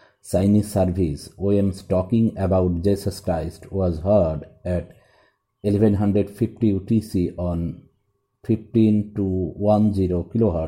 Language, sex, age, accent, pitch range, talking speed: English, male, 50-69, Indian, 90-105 Hz, 80 wpm